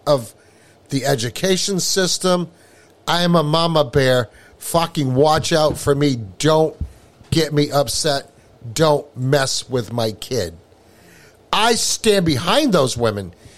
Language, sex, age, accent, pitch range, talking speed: English, male, 50-69, American, 115-180 Hz, 125 wpm